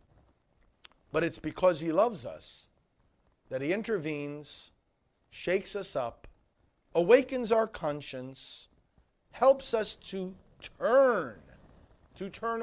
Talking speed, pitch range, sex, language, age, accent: 100 wpm, 150-225 Hz, male, English, 50-69, American